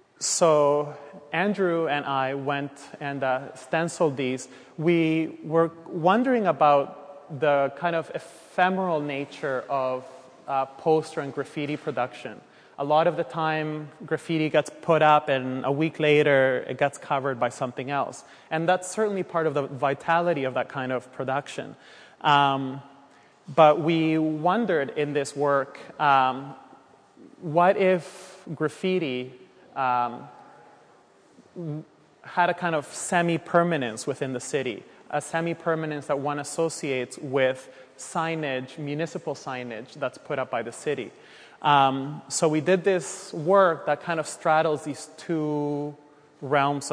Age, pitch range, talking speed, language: 30-49, 135-165 Hz, 130 wpm, English